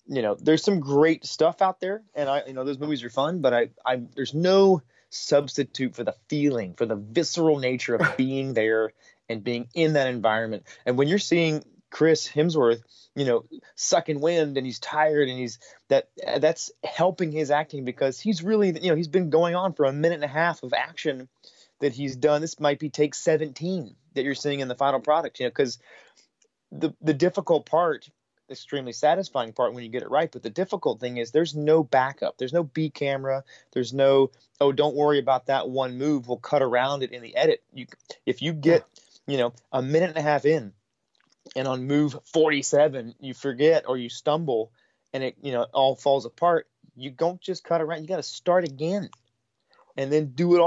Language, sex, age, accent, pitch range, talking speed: English, male, 30-49, American, 130-165 Hz, 205 wpm